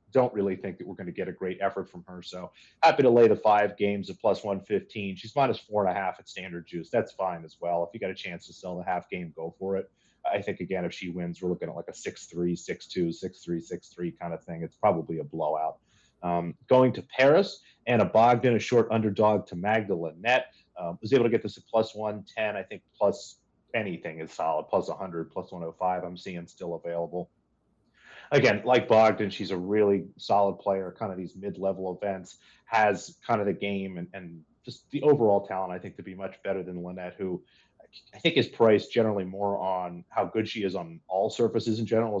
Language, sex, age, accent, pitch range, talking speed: English, male, 30-49, American, 85-105 Hz, 235 wpm